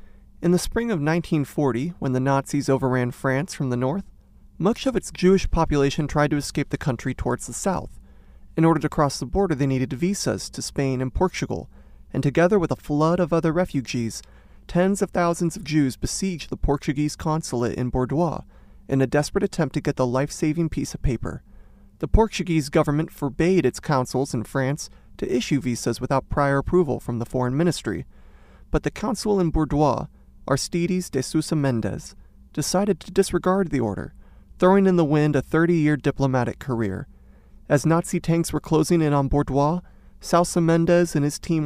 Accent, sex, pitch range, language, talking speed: American, male, 130-170 Hz, English, 175 wpm